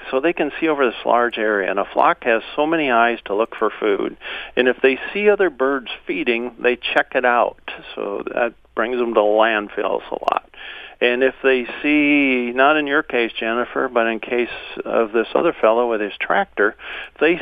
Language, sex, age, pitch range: English, male, 50-69, 110-135 Hz